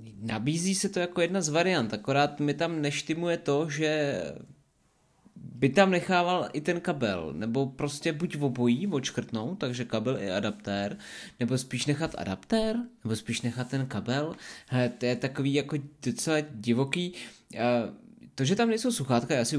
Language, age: Czech, 20-39